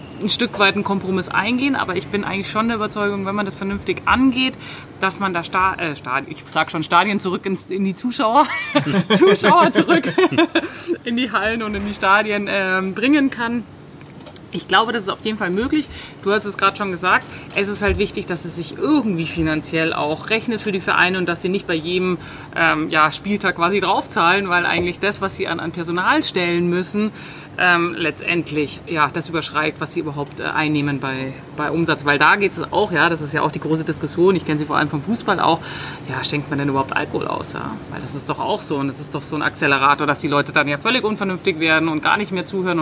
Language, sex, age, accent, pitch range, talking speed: German, female, 30-49, German, 155-205 Hz, 215 wpm